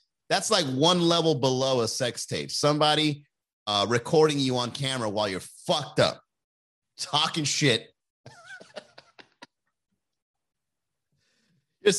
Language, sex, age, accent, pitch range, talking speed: English, male, 30-49, American, 120-170 Hz, 105 wpm